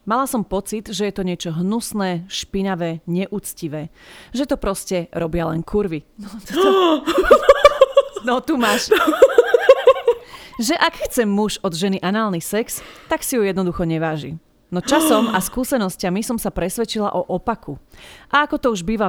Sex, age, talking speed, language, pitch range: female, 30-49, 150 wpm, Slovak, 175-230 Hz